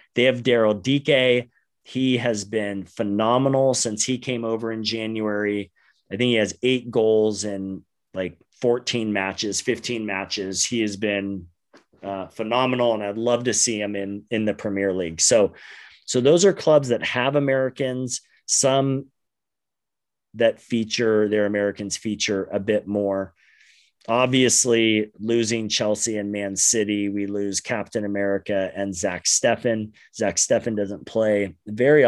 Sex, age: male, 30-49